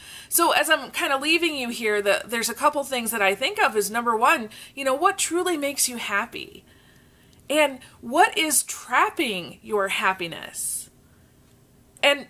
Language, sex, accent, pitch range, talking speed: English, female, American, 225-310 Hz, 160 wpm